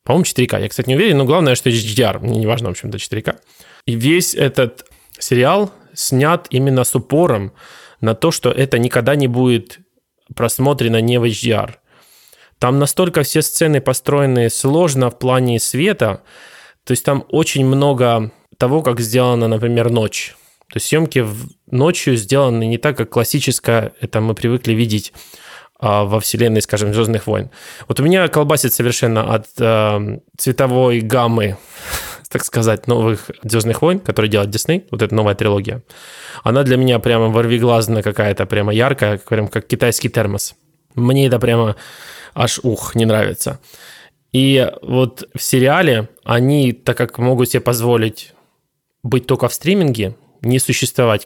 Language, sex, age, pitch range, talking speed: Russian, male, 20-39, 110-135 Hz, 150 wpm